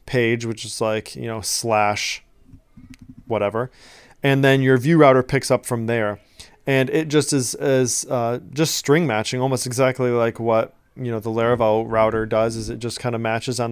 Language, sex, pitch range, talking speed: English, male, 115-135 Hz, 190 wpm